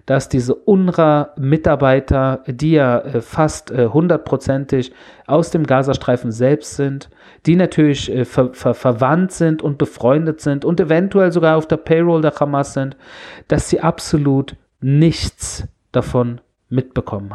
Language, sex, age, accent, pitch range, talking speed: German, male, 40-59, German, 130-160 Hz, 125 wpm